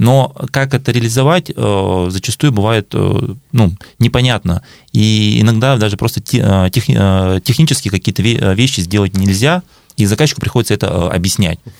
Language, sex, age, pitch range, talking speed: Russian, male, 20-39, 90-120 Hz, 110 wpm